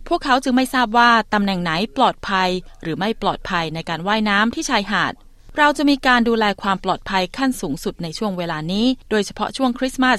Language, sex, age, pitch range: Thai, female, 20-39, 185-240 Hz